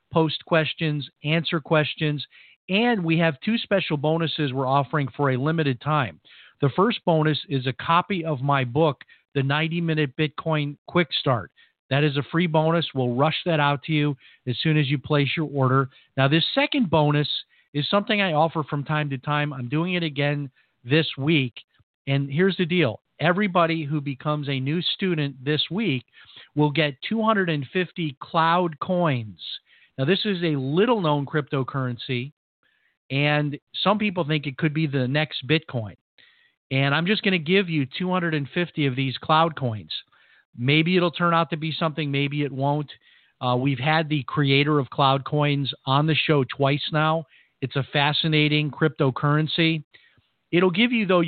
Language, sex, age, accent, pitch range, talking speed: English, male, 50-69, American, 140-165 Hz, 170 wpm